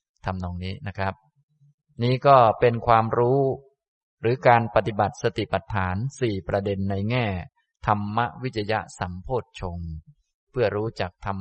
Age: 20-39